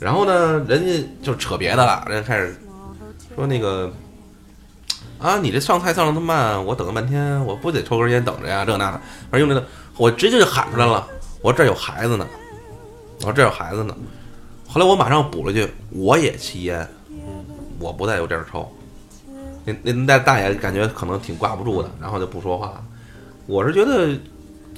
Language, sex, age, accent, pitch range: Chinese, male, 20-39, native, 95-145 Hz